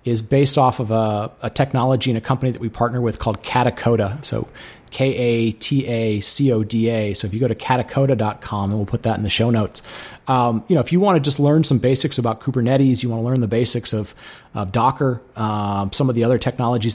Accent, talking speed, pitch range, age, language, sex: American, 210 wpm, 110-130 Hz, 30-49, English, male